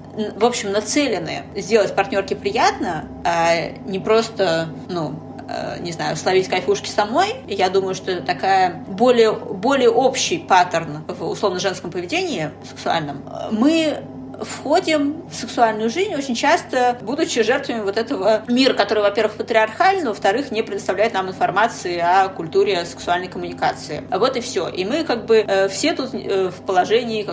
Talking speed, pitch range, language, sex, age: 140 wpm, 200-245 Hz, Russian, female, 20-39